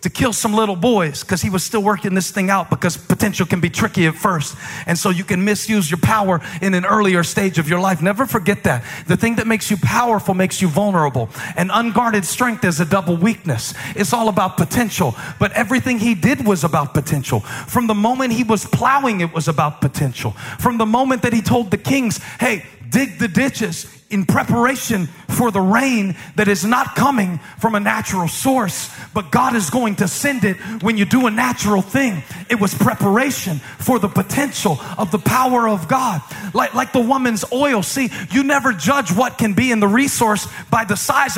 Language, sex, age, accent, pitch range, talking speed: English, male, 40-59, American, 185-255 Hz, 205 wpm